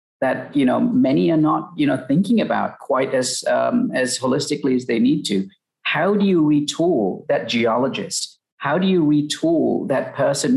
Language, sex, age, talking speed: English, male, 50-69, 175 wpm